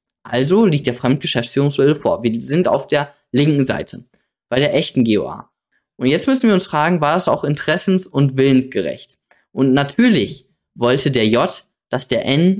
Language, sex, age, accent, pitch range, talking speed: German, male, 20-39, German, 125-185 Hz, 165 wpm